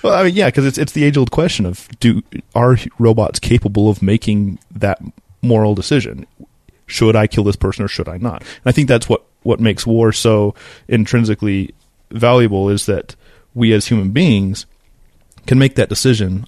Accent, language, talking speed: American, English, 180 wpm